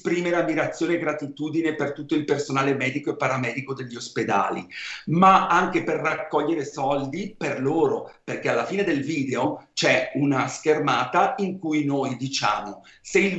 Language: Italian